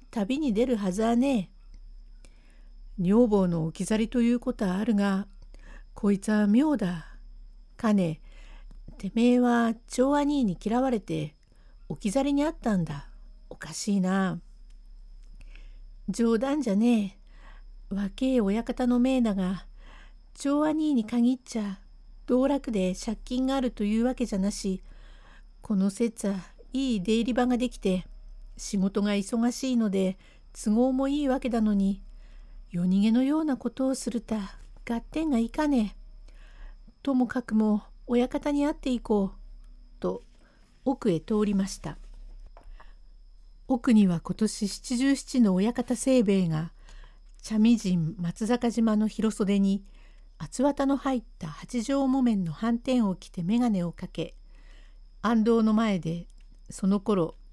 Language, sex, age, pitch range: Japanese, female, 60-79, 195-250 Hz